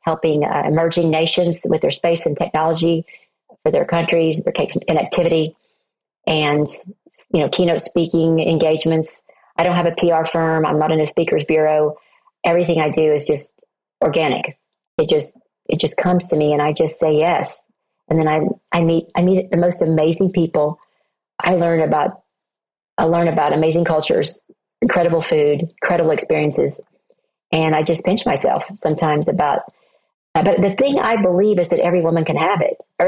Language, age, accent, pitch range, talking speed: English, 40-59, American, 155-185 Hz, 170 wpm